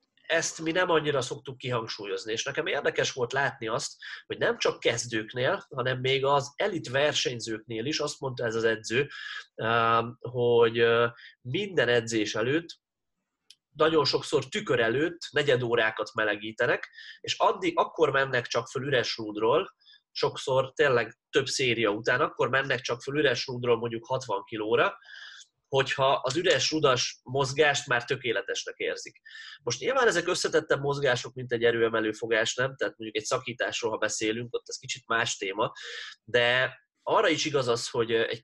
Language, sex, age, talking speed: Hungarian, male, 30-49, 150 wpm